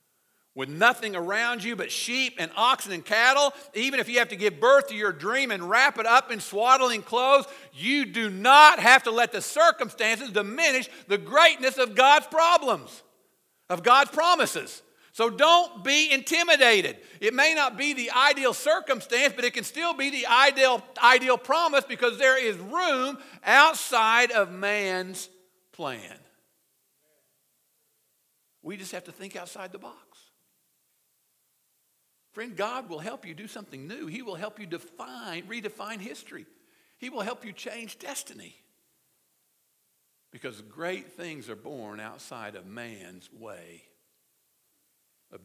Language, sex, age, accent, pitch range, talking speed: English, male, 50-69, American, 180-270 Hz, 145 wpm